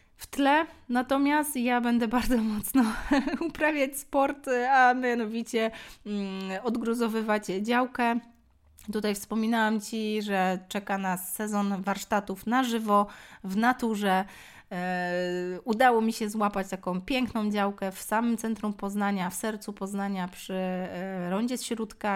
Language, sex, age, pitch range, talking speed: Polish, female, 20-39, 200-235 Hz, 115 wpm